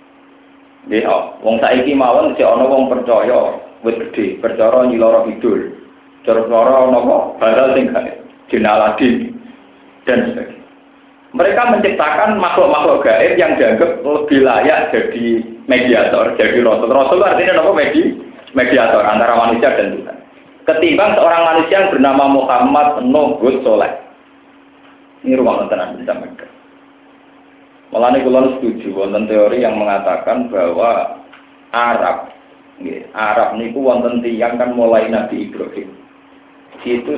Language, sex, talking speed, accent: Indonesian, male, 80 wpm, native